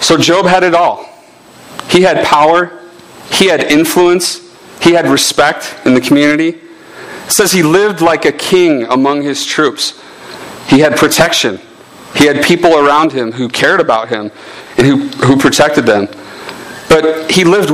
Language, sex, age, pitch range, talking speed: English, male, 40-59, 135-180 Hz, 160 wpm